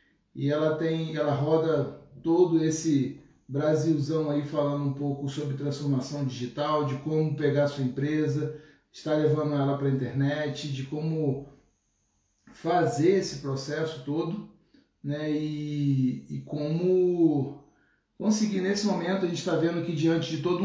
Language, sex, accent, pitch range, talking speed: Portuguese, male, Brazilian, 145-170 Hz, 135 wpm